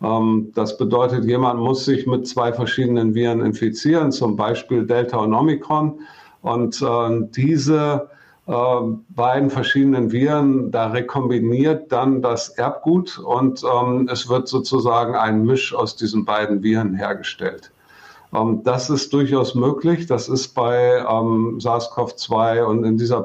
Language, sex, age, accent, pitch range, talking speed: German, male, 50-69, German, 110-130 Hz, 120 wpm